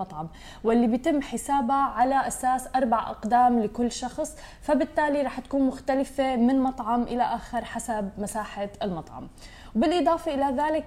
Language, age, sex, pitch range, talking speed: Arabic, 20-39, female, 225-270 Hz, 125 wpm